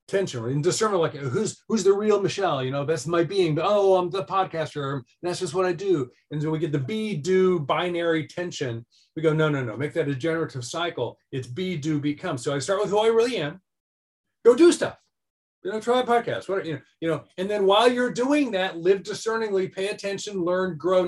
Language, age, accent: English, 40-59, American